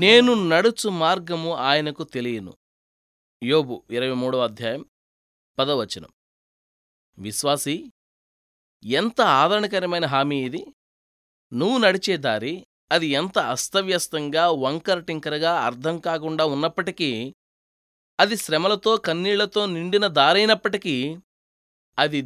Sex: male